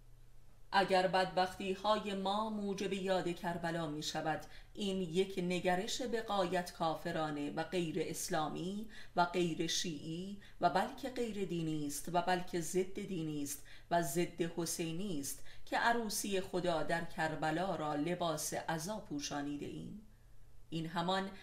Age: 30-49